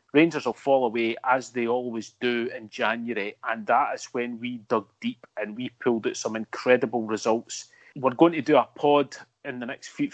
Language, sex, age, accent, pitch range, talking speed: English, male, 30-49, British, 125-155 Hz, 195 wpm